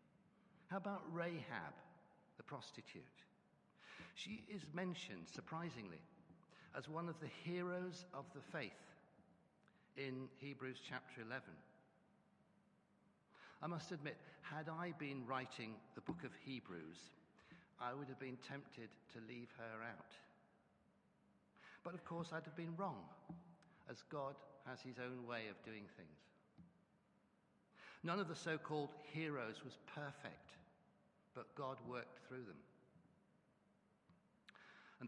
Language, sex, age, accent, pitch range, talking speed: English, male, 60-79, British, 125-170 Hz, 120 wpm